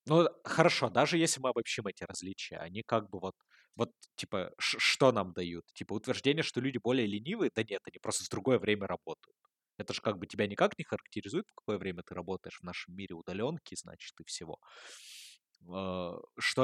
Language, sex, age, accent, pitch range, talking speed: Russian, male, 20-39, native, 95-130 Hz, 195 wpm